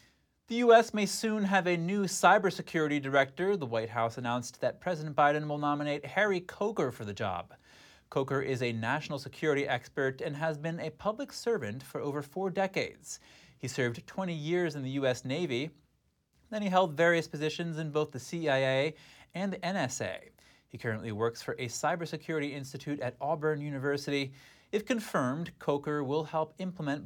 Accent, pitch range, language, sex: American, 135-175 Hz, English, male